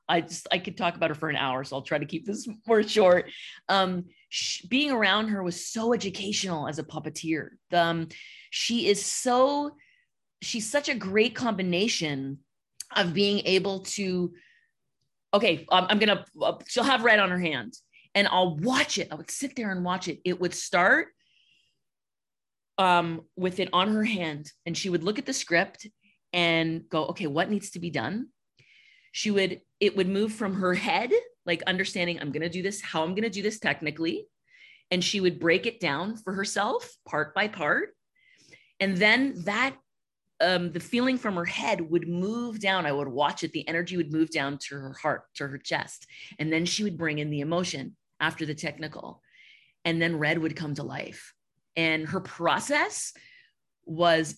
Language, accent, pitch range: English, American, 165-215 Hz